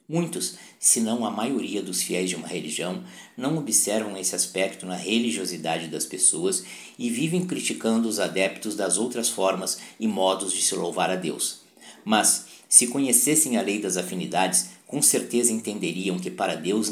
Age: 50-69